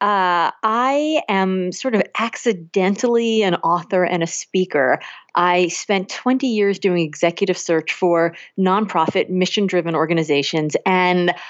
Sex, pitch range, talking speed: female, 185-250 Hz, 120 wpm